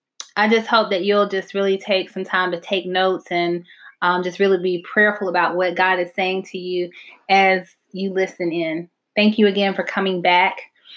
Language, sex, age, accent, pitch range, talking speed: English, female, 20-39, American, 180-205 Hz, 195 wpm